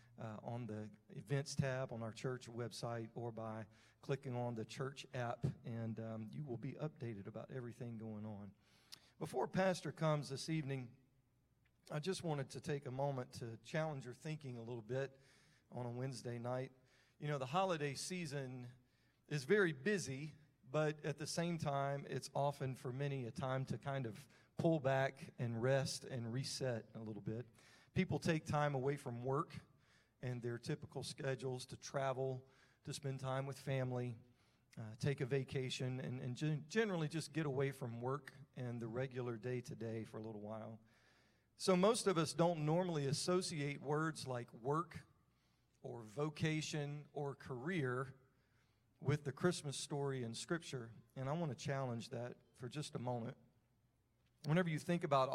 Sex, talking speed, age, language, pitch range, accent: male, 165 wpm, 40-59, English, 120-150 Hz, American